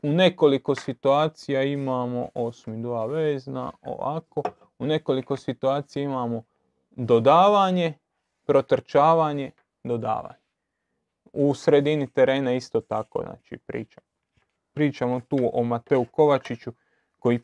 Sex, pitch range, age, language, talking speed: male, 125-155 Hz, 30-49, Croatian, 95 wpm